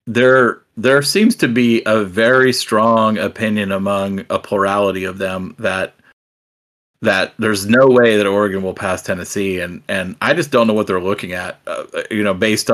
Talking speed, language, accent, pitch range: 180 wpm, English, American, 100-120 Hz